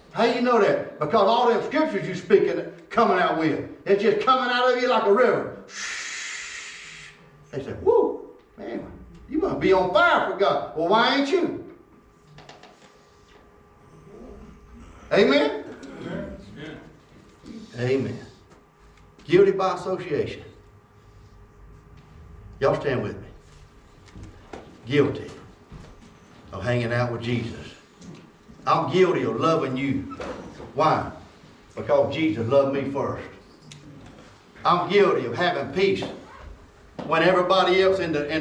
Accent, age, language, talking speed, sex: American, 60-79, English, 115 wpm, male